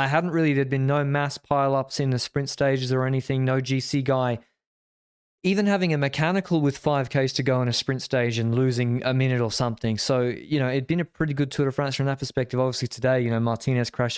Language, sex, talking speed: English, male, 235 wpm